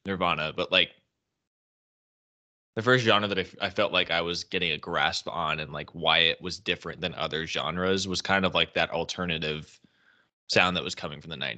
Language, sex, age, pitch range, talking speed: English, male, 20-39, 80-95 Hz, 195 wpm